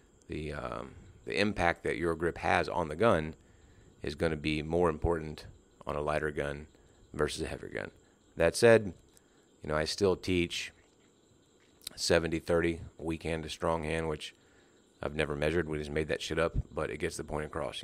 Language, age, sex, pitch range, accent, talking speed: English, 30-49, male, 75-85 Hz, American, 180 wpm